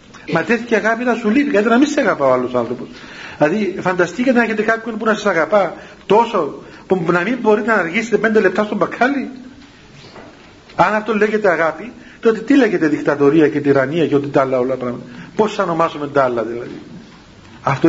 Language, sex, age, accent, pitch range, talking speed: Greek, male, 50-69, native, 155-215 Hz, 190 wpm